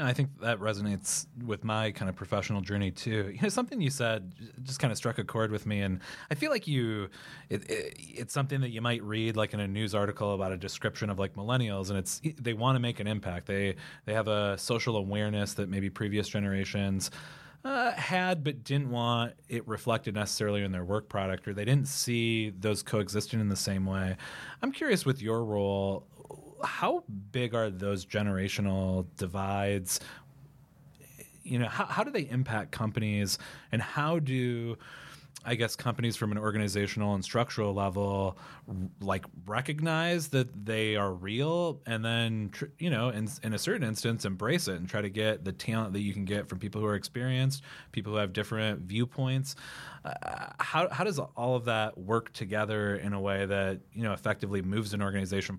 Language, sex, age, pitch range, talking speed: English, male, 30-49, 100-125 Hz, 190 wpm